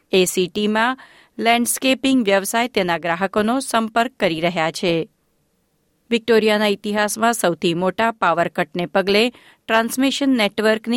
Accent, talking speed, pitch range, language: native, 95 wpm, 180-230 Hz, Gujarati